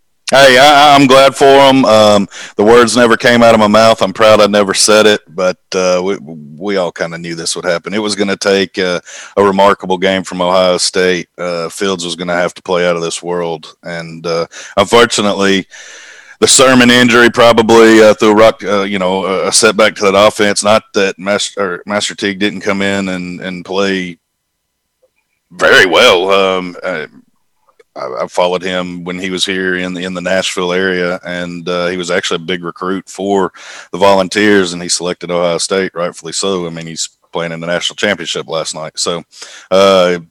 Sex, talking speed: male, 195 wpm